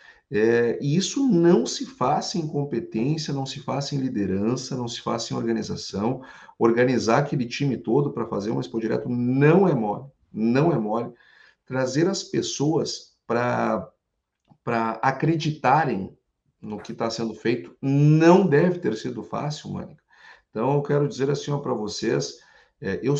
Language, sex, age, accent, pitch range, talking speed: Portuguese, male, 50-69, Brazilian, 115-145 Hz, 150 wpm